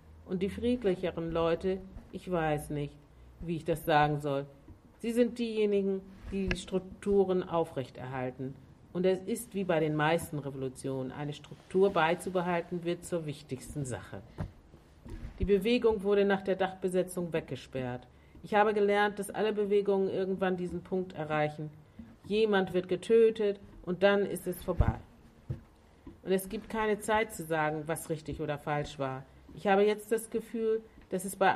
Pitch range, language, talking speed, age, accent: 150-205 Hz, German, 150 wpm, 50-69, German